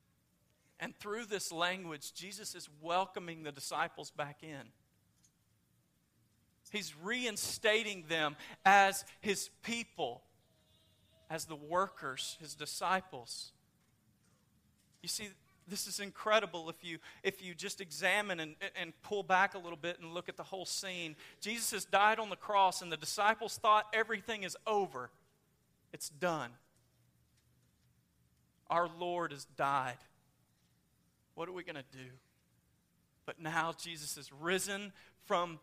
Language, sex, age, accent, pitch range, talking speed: English, male, 40-59, American, 155-200 Hz, 130 wpm